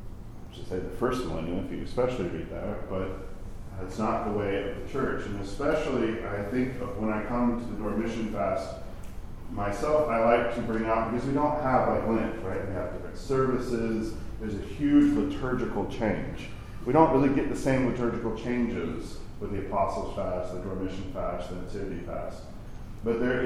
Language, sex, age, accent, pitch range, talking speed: English, male, 40-59, American, 100-120 Hz, 180 wpm